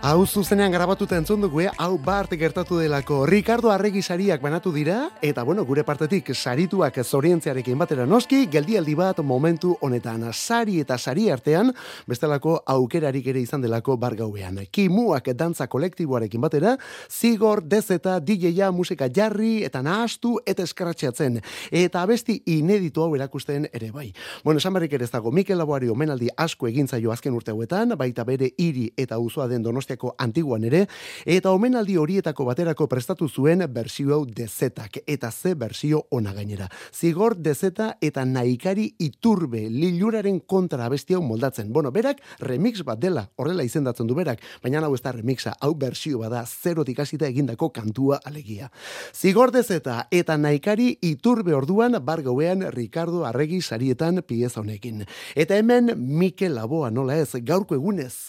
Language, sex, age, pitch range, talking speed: Spanish, male, 30-49, 130-185 Hz, 145 wpm